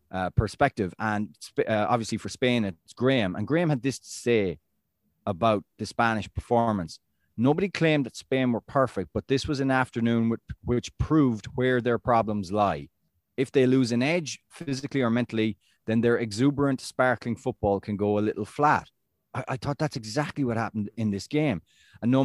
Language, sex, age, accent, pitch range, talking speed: English, male, 30-49, Irish, 105-130 Hz, 180 wpm